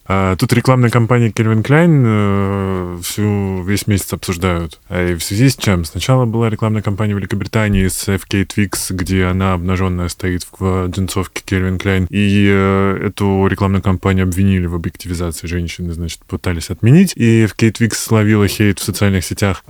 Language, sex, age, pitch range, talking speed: Russian, male, 20-39, 95-115 Hz, 155 wpm